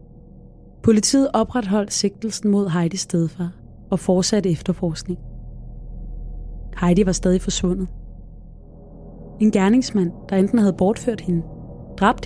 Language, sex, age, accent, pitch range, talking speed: Danish, female, 20-39, native, 175-205 Hz, 105 wpm